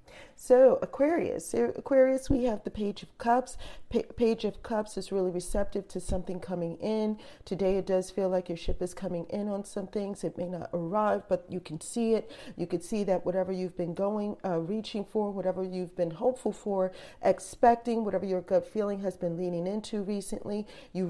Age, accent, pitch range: 40-59, American, 180-230 Hz